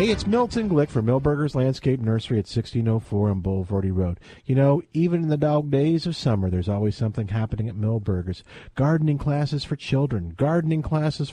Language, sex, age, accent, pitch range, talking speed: English, male, 50-69, American, 115-175 Hz, 180 wpm